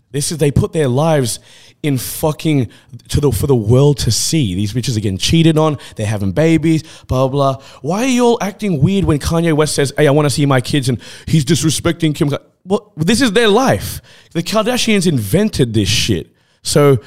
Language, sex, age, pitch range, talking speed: English, male, 20-39, 130-165 Hz, 210 wpm